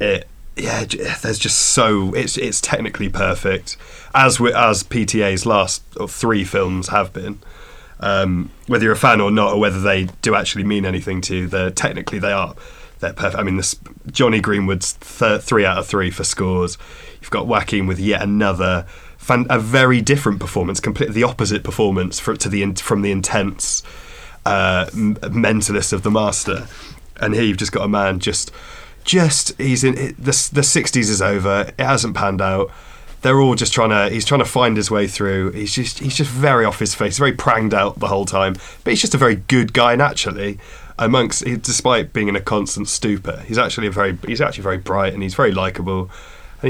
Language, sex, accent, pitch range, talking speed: English, male, British, 95-120 Hz, 200 wpm